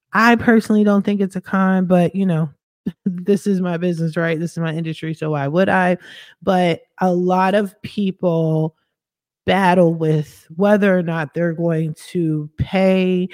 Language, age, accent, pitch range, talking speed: English, 30-49, American, 155-185 Hz, 165 wpm